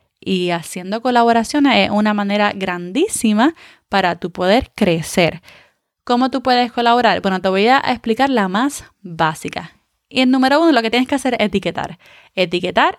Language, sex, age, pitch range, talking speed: Spanish, female, 20-39, 200-270 Hz, 160 wpm